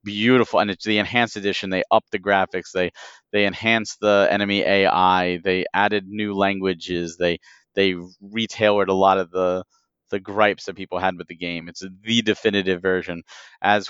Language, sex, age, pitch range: English, male, 30-49, 95-105 Hz